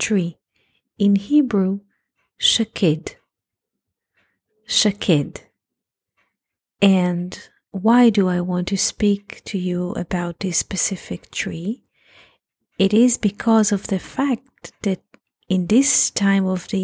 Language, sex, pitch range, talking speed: English, female, 180-215 Hz, 105 wpm